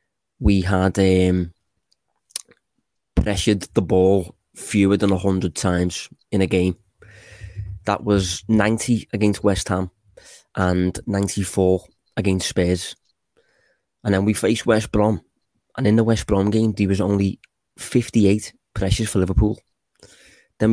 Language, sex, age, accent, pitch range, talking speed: English, male, 20-39, British, 95-110 Hz, 125 wpm